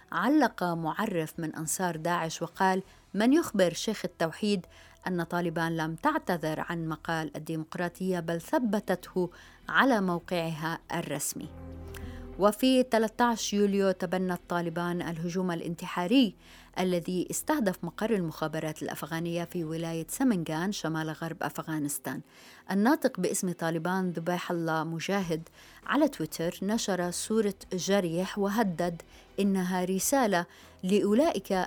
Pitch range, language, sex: 165-205 Hz, Arabic, female